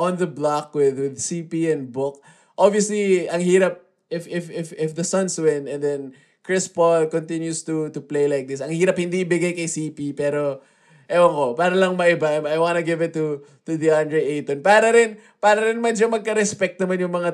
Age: 20-39